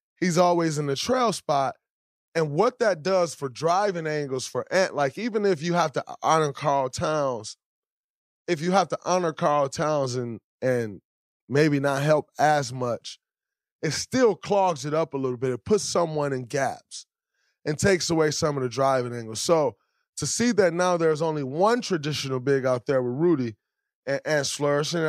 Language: English